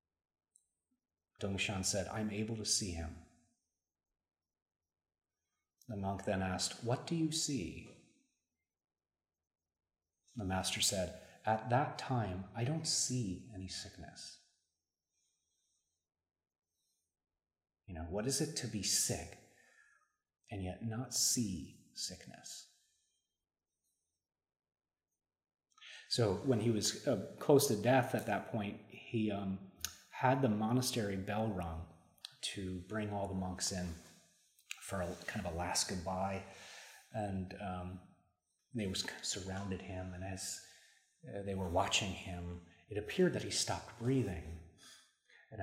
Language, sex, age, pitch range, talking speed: English, male, 30-49, 85-115 Hz, 115 wpm